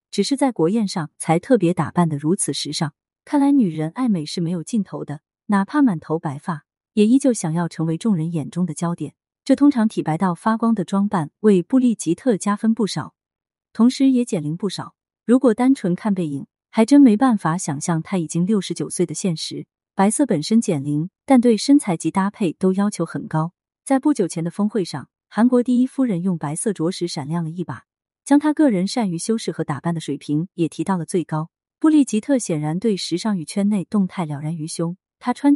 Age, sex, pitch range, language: 30-49, female, 160-230 Hz, Chinese